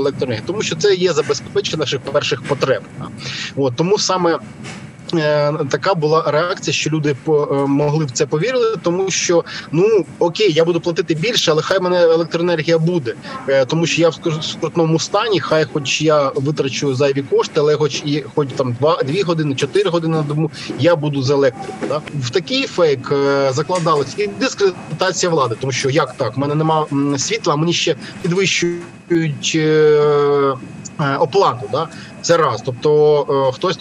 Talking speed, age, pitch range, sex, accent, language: 155 wpm, 20-39, 140-170 Hz, male, native, Ukrainian